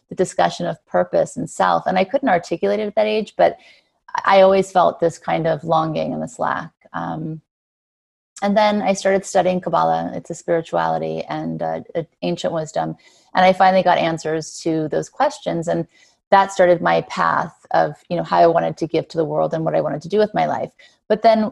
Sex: female